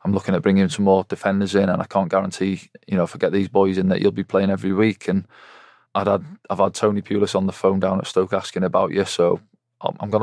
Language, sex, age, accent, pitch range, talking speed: English, male, 20-39, British, 95-110 Hz, 250 wpm